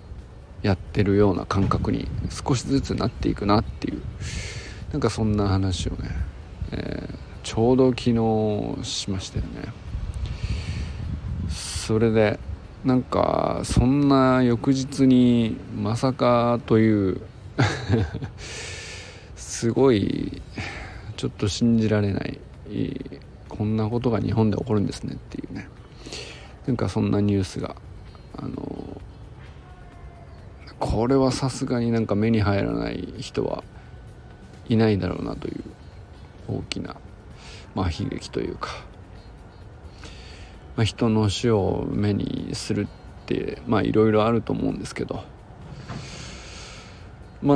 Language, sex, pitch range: Japanese, male, 95-115 Hz